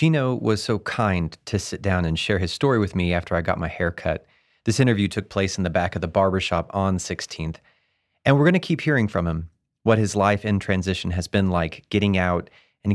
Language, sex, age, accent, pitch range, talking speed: English, male, 30-49, American, 90-115 Hz, 230 wpm